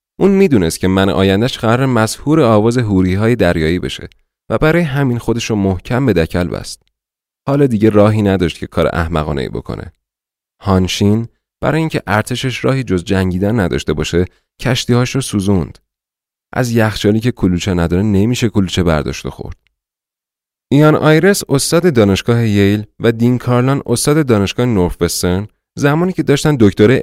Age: 30-49